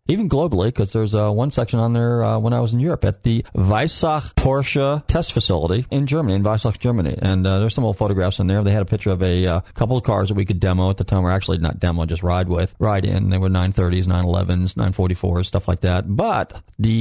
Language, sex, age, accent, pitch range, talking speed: English, male, 30-49, American, 90-110 Hz, 245 wpm